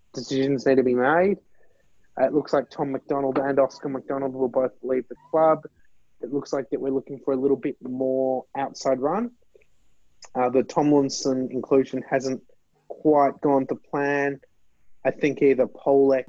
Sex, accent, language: male, Australian, English